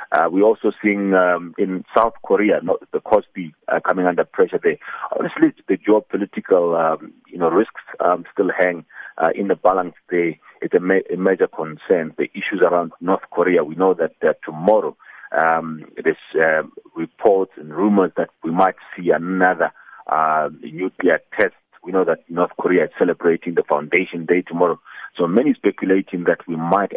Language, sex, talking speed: English, male, 160 wpm